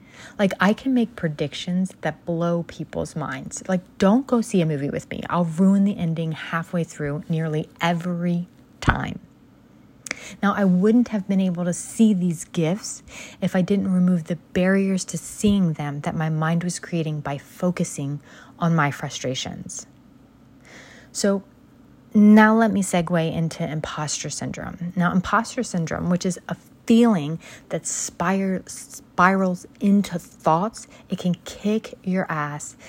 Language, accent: English, American